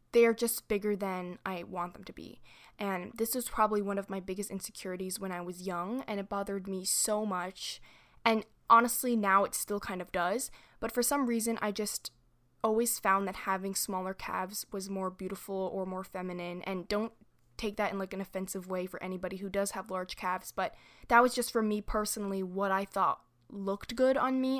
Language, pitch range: English, 190-215 Hz